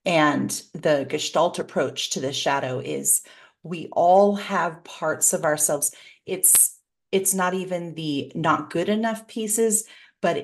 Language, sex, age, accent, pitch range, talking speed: English, female, 40-59, American, 155-185 Hz, 140 wpm